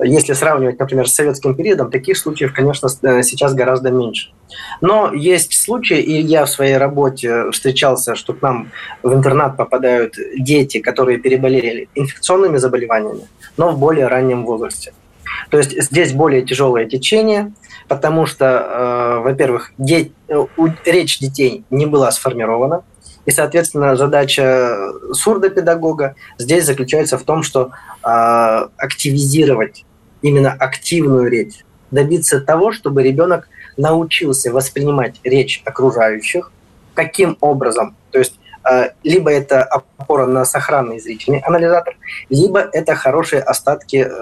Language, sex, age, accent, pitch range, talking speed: Russian, male, 20-39, native, 125-155 Hz, 120 wpm